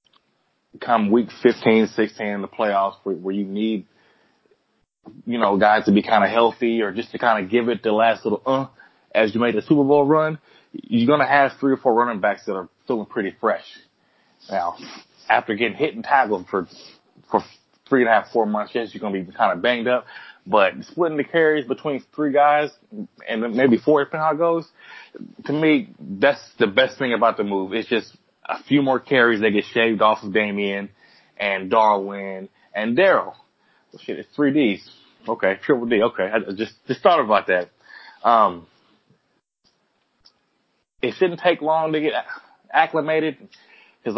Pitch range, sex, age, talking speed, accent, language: 110-145 Hz, male, 20-39, 185 wpm, American, English